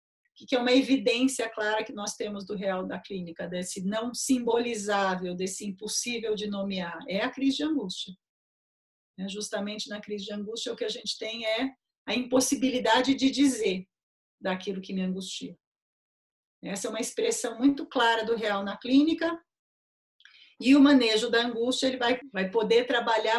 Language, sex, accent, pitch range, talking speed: Portuguese, female, Brazilian, 210-260 Hz, 165 wpm